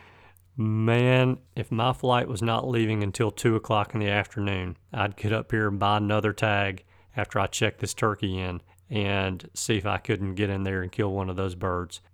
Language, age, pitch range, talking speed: English, 40-59, 100-120 Hz, 205 wpm